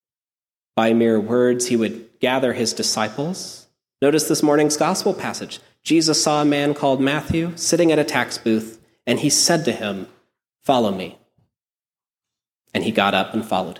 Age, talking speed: 30-49, 160 wpm